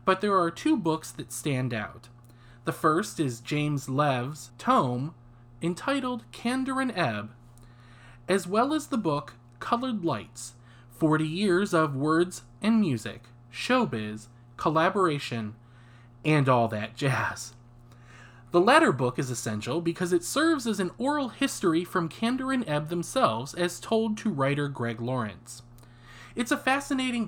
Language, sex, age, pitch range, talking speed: English, male, 20-39, 120-180 Hz, 140 wpm